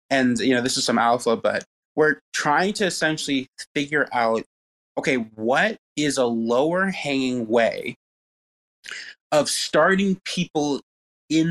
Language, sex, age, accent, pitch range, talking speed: English, male, 20-39, American, 115-155 Hz, 130 wpm